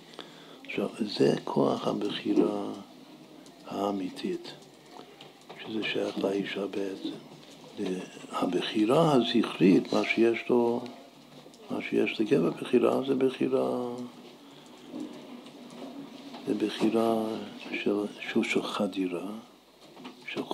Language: Hebrew